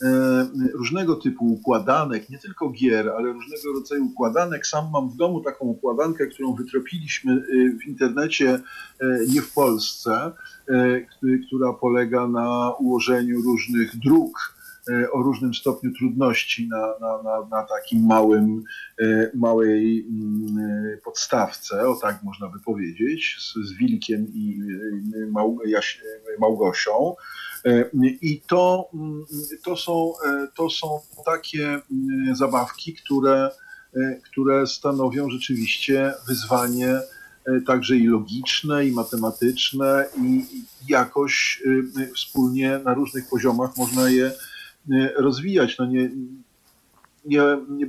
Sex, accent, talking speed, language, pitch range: male, native, 100 wpm, Polish, 120-150 Hz